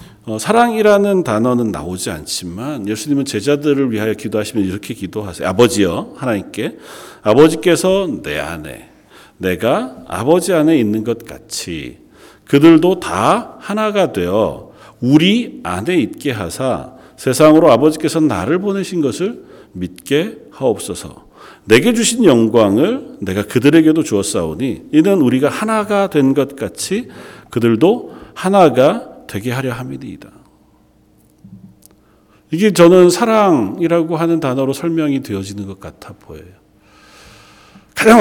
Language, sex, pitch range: Korean, male, 105-170 Hz